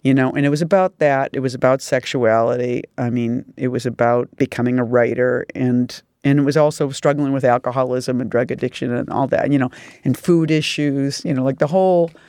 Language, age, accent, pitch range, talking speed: English, 40-59, American, 125-150 Hz, 210 wpm